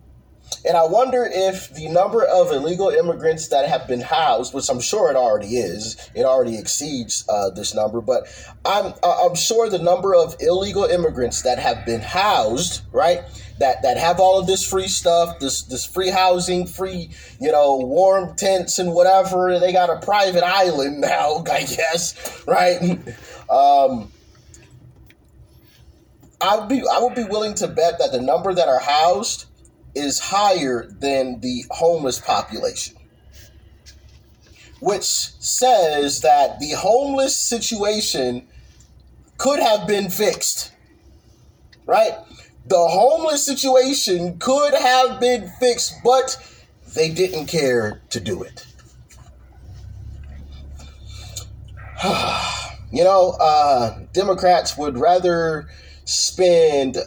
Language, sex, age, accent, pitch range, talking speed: English, male, 30-49, American, 125-205 Hz, 130 wpm